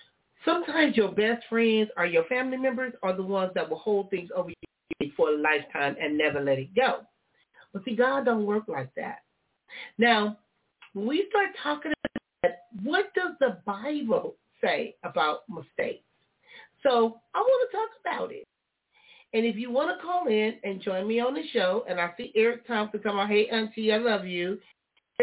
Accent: American